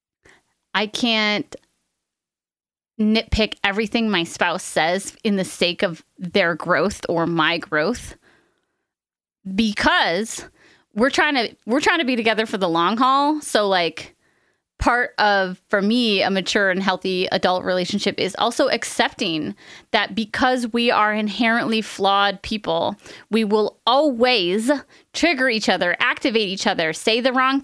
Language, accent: English, American